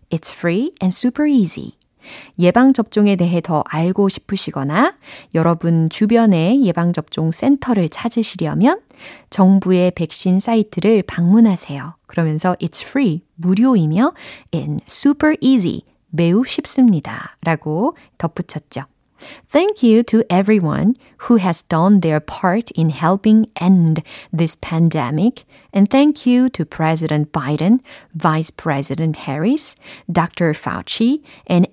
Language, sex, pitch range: Korean, female, 165-240 Hz